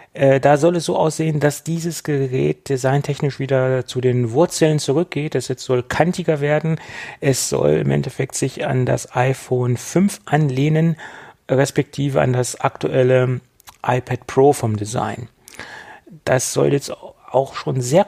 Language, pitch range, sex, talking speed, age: German, 115-140 Hz, male, 145 wpm, 30-49